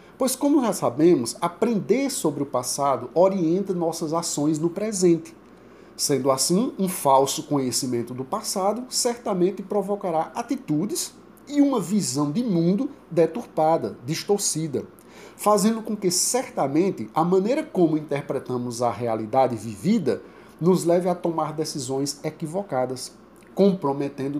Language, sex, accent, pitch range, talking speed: Portuguese, male, Brazilian, 140-205 Hz, 120 wpm